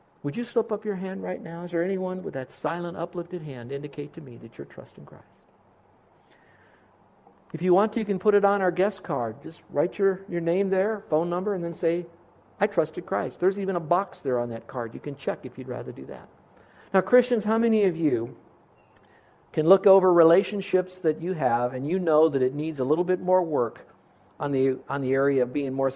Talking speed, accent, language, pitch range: 225 wpm, American, English, 140-185 Hz